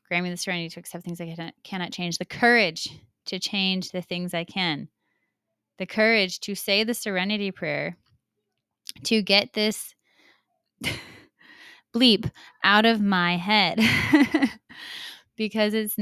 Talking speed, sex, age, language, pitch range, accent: 135 wpm, female, 20-39, English, 170-205 Hz, American